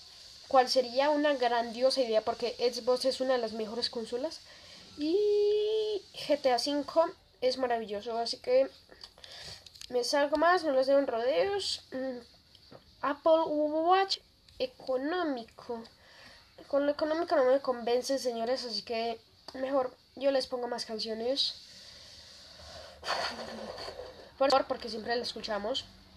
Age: 10-29